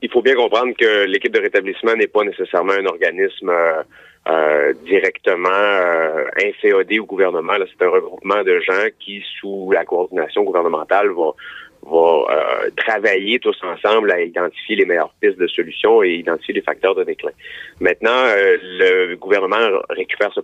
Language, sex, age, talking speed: French, male, 30-49, 165 wpm